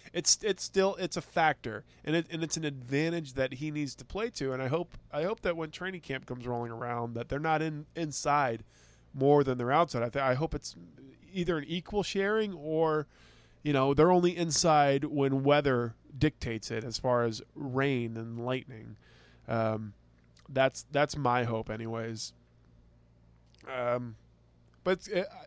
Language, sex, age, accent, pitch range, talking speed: English, male, 20-39, American, 110-145 Hz, 175 wpm